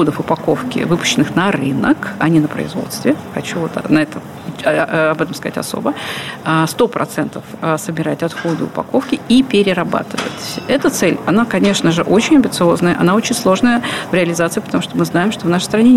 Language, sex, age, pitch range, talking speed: Russian, female, 50-69, 165-225 Hz, 160 wpm